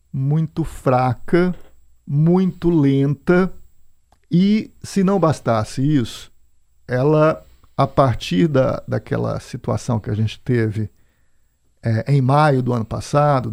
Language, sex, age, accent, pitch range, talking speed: Portuguese, male, 50-69, Brazilian, 115-150 Hz, 100 wpm